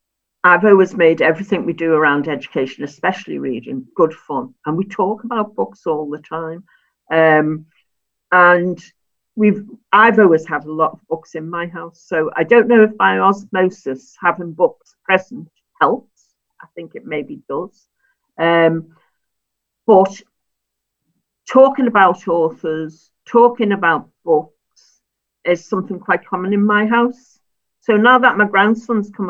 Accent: British